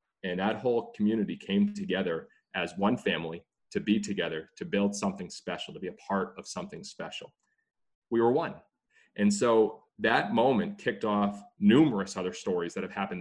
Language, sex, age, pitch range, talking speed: English, male, 30-49, 100-145 Hz, 175 wpm